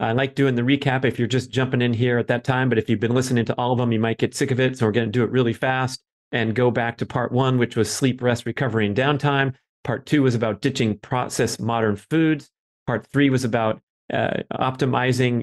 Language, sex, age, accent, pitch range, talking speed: English, male, 40-59, American, 105-130 Hz, 250 wpm